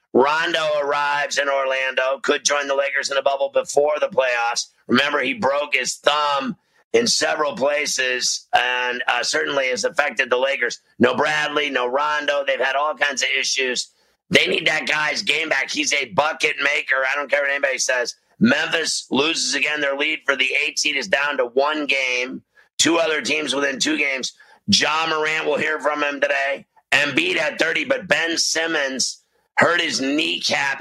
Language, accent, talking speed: English, American, 180 wpm